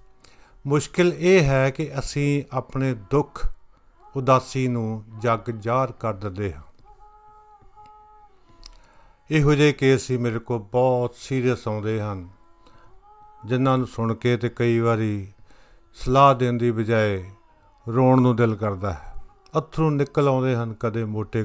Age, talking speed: 50-69, 130 wpm